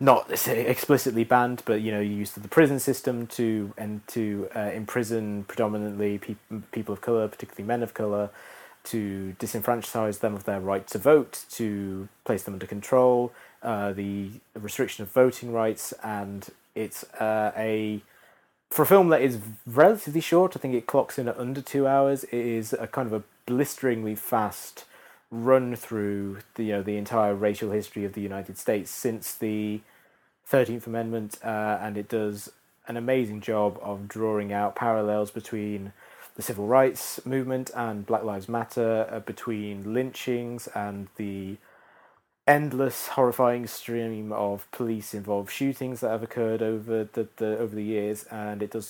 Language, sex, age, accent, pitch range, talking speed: English, male, 20-39, British, 105-120 Hz, 165 wpm